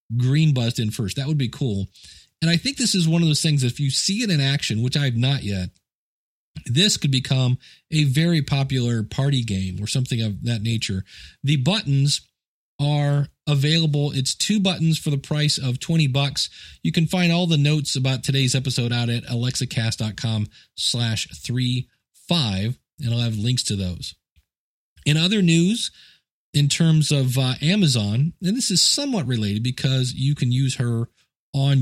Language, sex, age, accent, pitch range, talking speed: English, male, 40-59, American, 120-155 Hz, 175 wpm